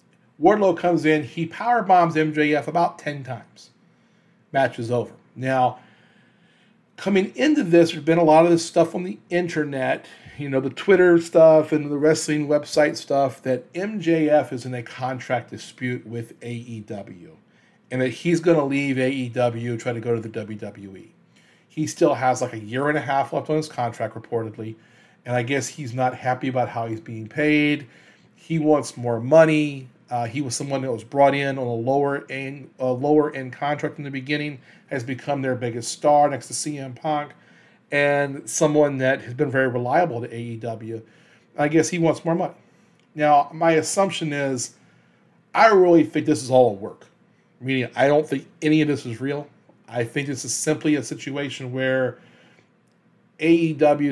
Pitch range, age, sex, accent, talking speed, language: 125-155 Hz, 40-59, male, American, 175 wpm, English